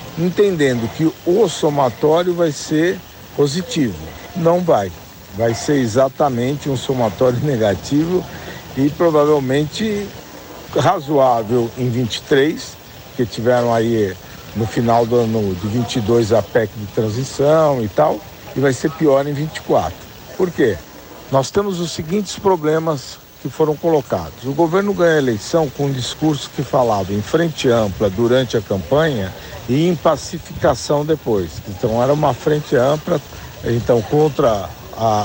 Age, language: 60-79, Portuguese